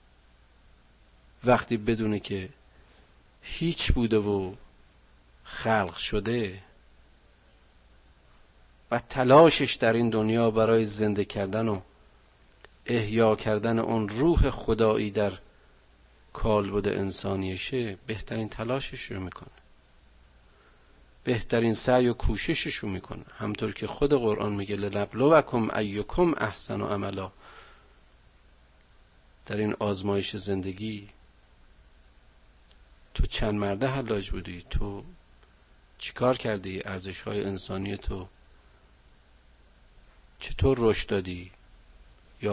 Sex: male